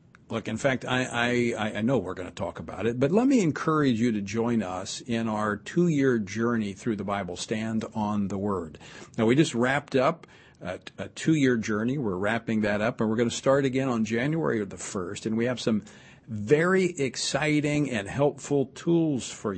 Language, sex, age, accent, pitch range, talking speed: English, male, 50-69, American, 115-140 Hz, 200 wpm